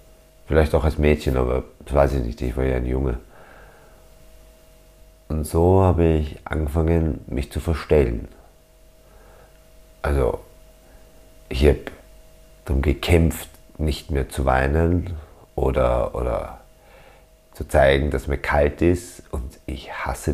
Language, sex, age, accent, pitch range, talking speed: German, male, 50-69, German, 70-80 Hz, 125 wpm